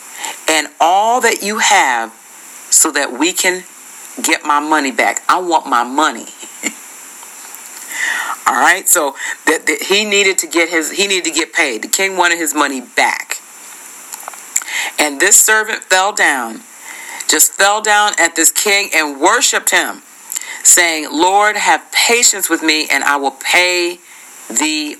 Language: English